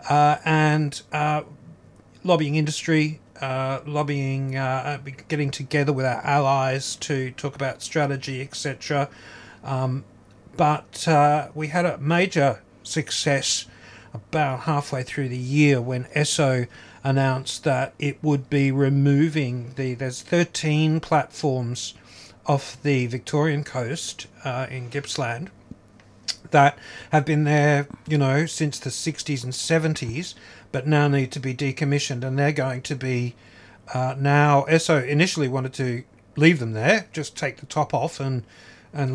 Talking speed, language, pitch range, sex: 135 wpm, English, 130-150 Hz, male